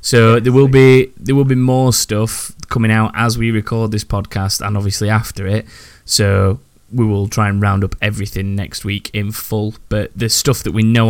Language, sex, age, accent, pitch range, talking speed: English, male, 20-39, British, 100-115 Hz, 205 wpm